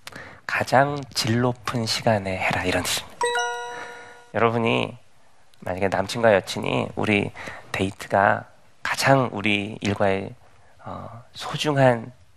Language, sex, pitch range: Korean, male, 100-130 Hz